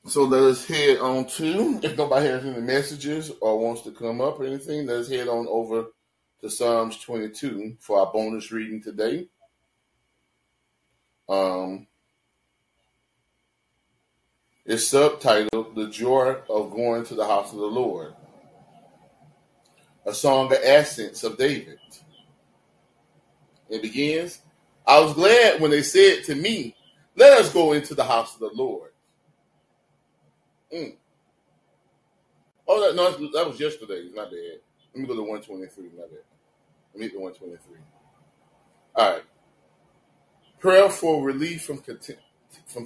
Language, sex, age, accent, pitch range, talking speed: English, male, 30-49, American, 115-180 Hz, 135 wpm